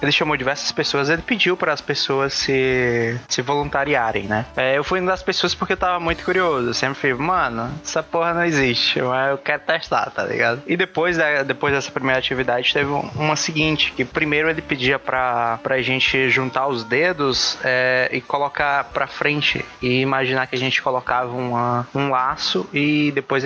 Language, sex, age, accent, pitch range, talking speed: Portuguese, male, 20-39, Brazilian, 130-160 Hz, 190 wpm